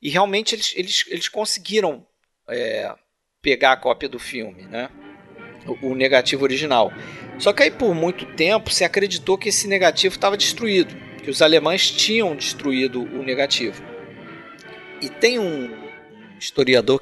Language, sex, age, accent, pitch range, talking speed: Portuguese, male, 40-59, Brazilian, 140-205 Hz, 145 wpm